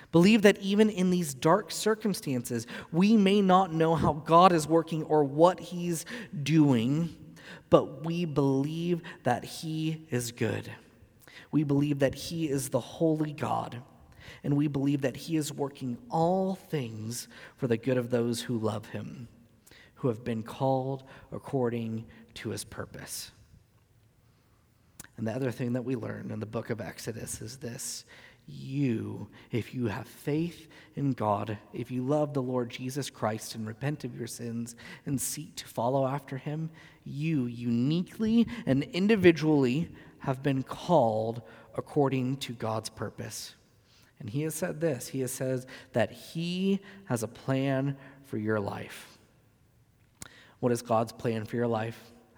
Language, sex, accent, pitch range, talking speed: English, male, American, 115-155 Hz, 150 wpm